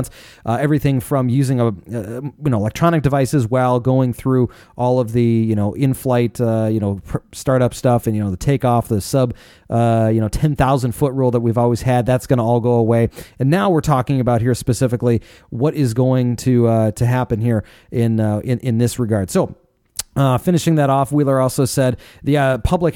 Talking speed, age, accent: 210 wpm, 30-49, American